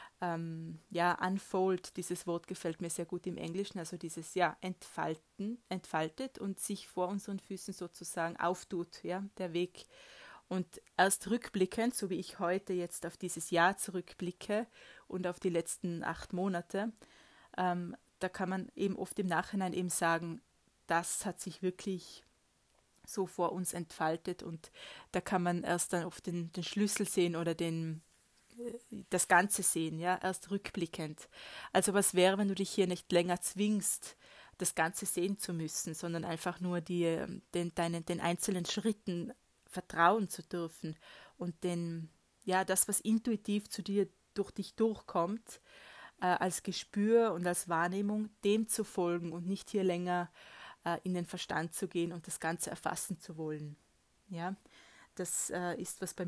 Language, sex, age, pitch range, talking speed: German, female, 20-39, 170-200 Hz, 160 wpm